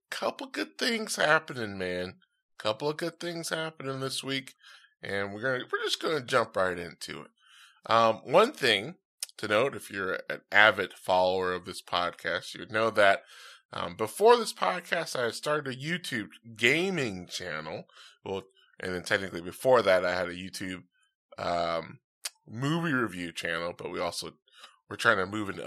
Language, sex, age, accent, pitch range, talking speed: English, male, 20-39, American, 95-135 Hz, 165 wpm